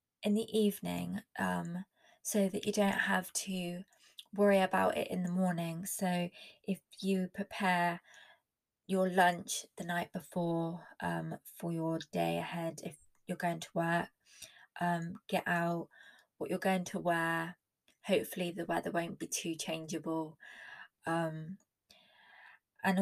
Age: 20-39